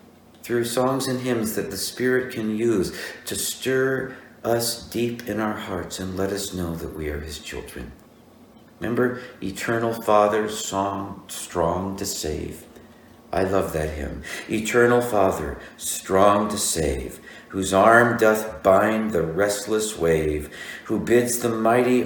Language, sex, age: English, male, 60-79